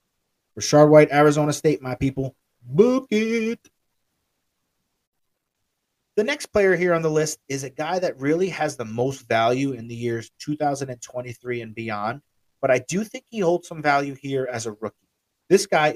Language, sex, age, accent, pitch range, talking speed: English, male, 30-49, American, 125-170 Hz, 165 wpm